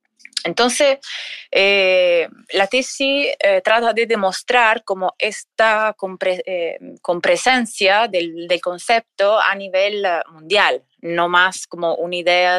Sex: female